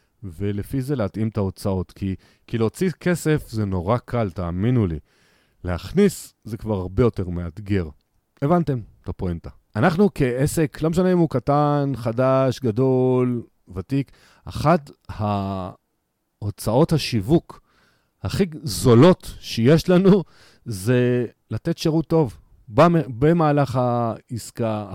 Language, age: Hebrew, 40-59